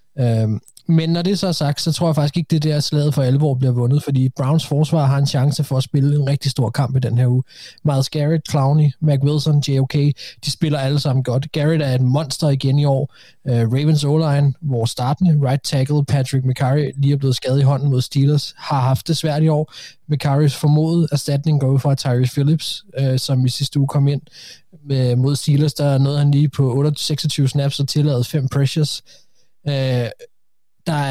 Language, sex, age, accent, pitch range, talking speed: Danish, male, 20-39, native, 135-150 Hz, 200 wpm